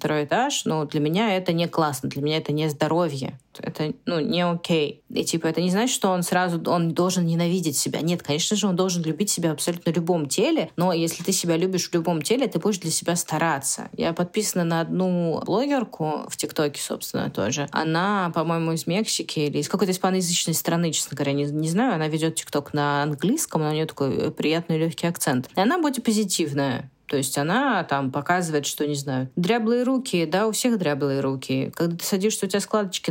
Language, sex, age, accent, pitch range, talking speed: Russian, female, 20-39, native, 150-205 Hz, 205 wpm